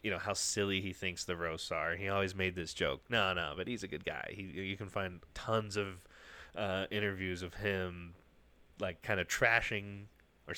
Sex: male